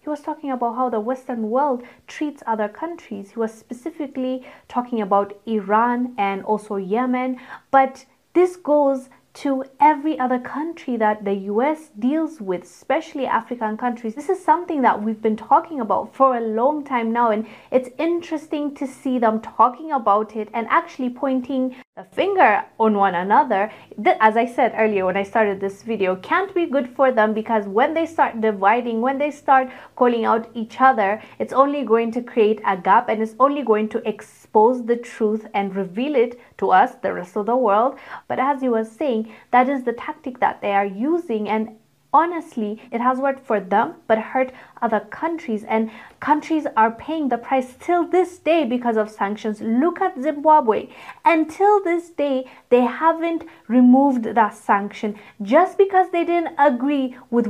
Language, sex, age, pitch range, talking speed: English, female, 20-39, 220-285 Hz, 175 wpm